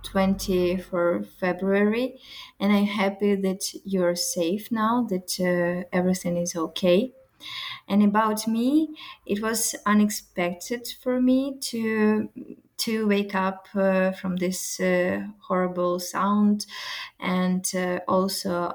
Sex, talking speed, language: female, 110 wpm, English